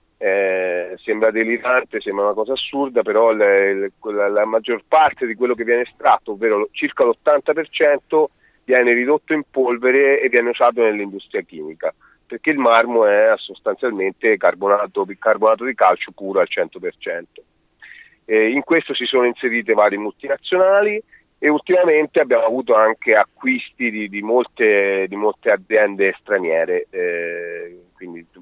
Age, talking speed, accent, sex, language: 40-59, 140 wpm, native, male, Italian